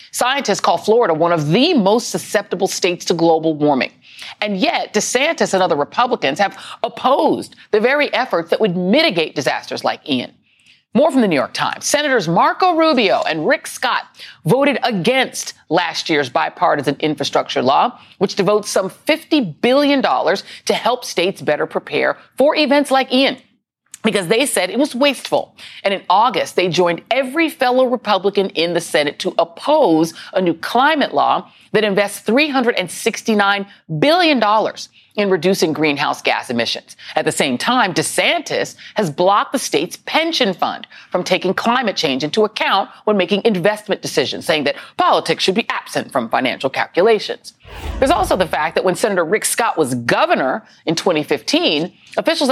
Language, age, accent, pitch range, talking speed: English, 40-59, American, 185-280 Hz, 160 wpm